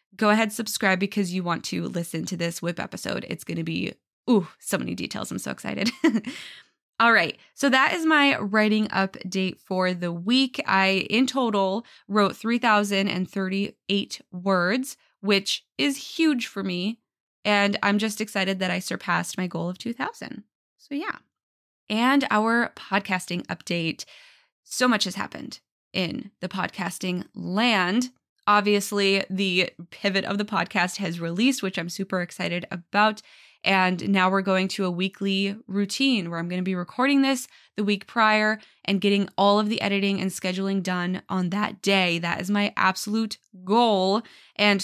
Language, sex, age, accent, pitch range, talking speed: English, female, 20-39, American, 185-220 Hz, 160 wpm